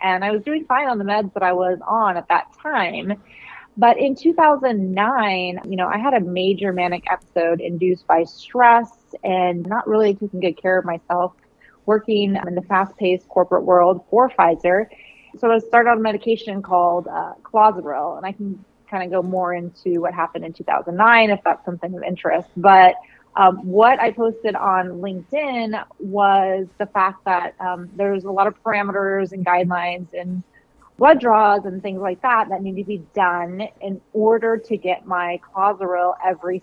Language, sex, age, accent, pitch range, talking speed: English, female, 30-49, American, 180-220 Hz, 180 wpm